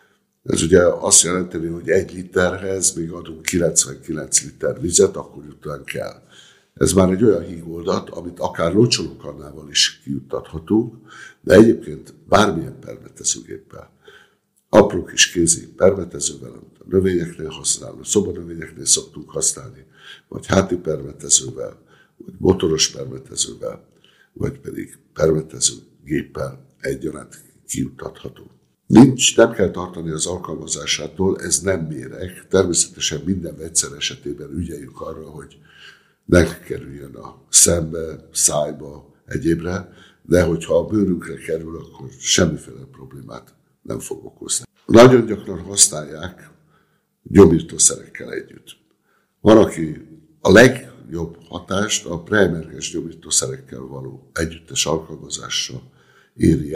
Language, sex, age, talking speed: Hungarian, male, 60-79, 105 wpm